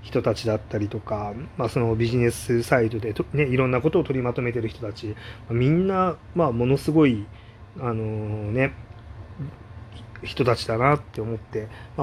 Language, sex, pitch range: Japanese, male, 110-130 Hz